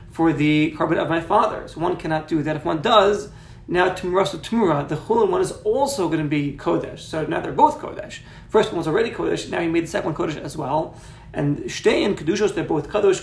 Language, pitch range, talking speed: English, 155-195 Hz, 225 wpm